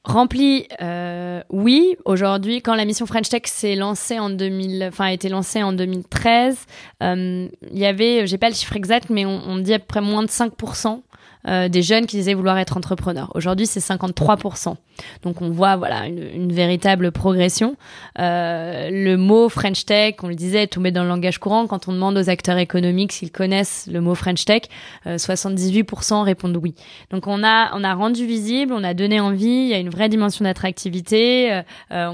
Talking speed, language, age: 200 wpm, French, 20-39